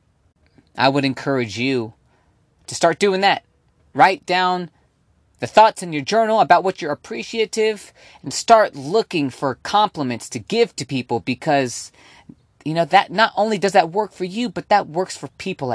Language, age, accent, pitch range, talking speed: English, 30-49, American, 120-170 Hz, 170 wpm